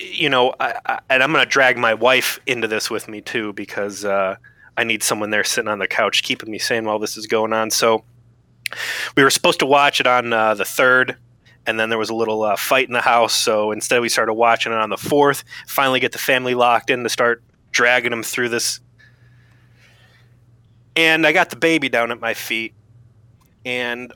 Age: 20-39